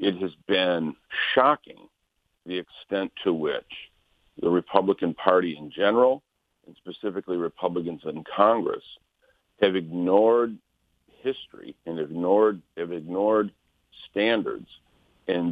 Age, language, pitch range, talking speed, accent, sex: 50-69, English, 85-120 Hz, 105 wpm, American, male